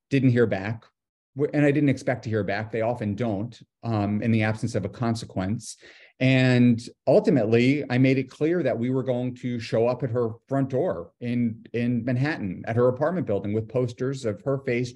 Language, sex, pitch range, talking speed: English, male, 115-140 Hz, 195 wpm